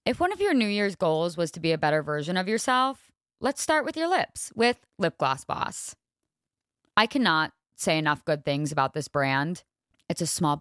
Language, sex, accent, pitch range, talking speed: English, female, American, 155-215 Hz, 205 wpm